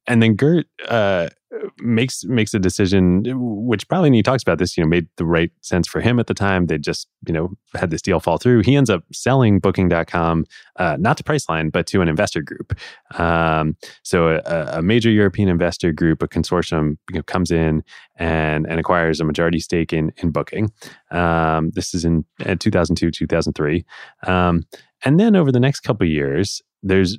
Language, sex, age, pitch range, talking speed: English, male, 20-39, 80-100 Hz, 205 wpm